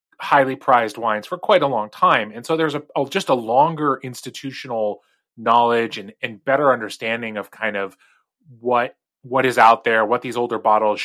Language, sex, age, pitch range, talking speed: English, male, 20-39, 110-155 Hz, 185 wpm